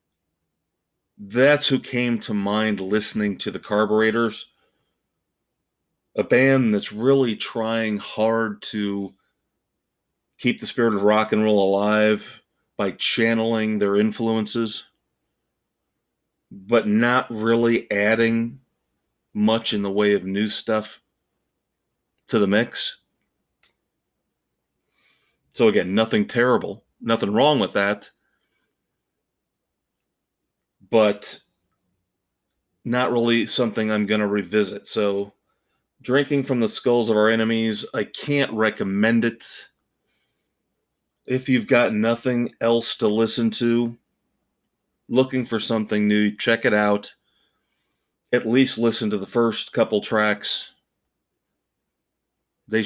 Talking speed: 105 wpm